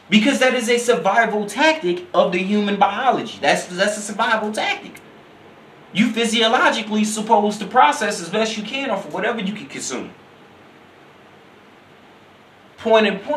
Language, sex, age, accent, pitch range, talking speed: English, male, 30-49, American, 210-260 Hz, 145 wpm